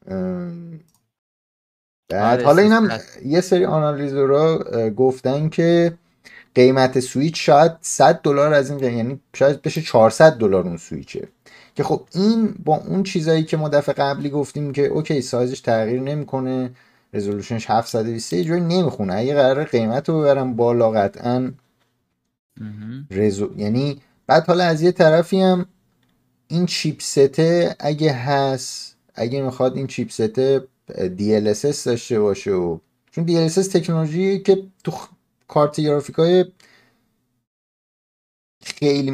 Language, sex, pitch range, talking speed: Persian, male, 105-160 Hz, 130 wpm